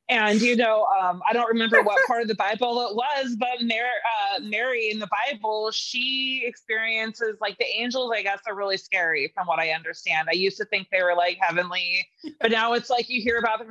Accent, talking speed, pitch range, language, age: American, 225 wpm, 205-240 Hz, English, 20-39